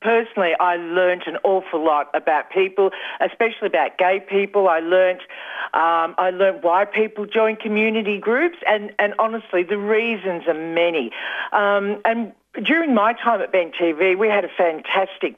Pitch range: 170-225 Hz